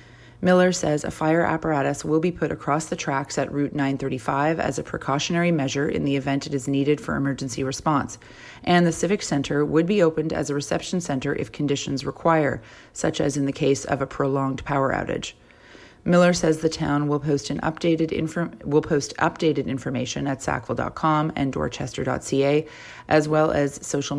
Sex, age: female, 30-49